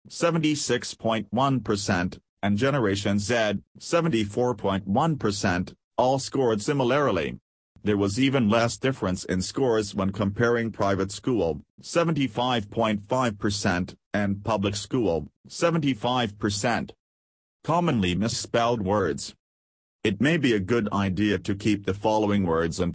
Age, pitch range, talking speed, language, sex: 40-59, 95-120 Hz, 110 wpm, English, male